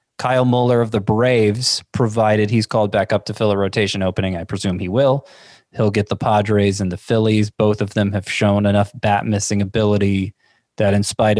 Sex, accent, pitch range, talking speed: male, American, 100-120 Hz, 200 wpm